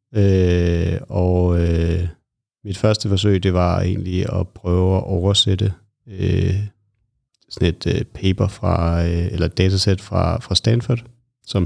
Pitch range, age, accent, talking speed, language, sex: 90-105 Hz, 30-49, native, 135 wpm, Danish, male